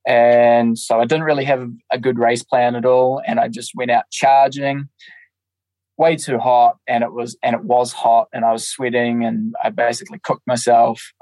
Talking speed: 200 wpm